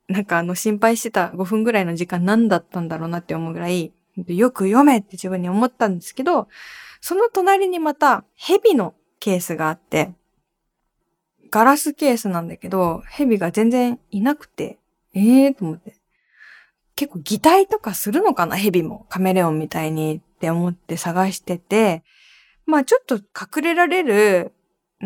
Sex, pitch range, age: female, 175-265 Hz, 20-39